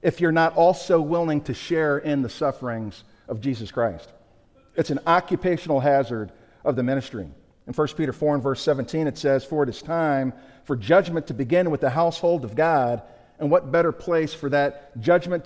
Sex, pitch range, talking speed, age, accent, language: male, 135-170 Hz, 190 wpm, 50-69, American, English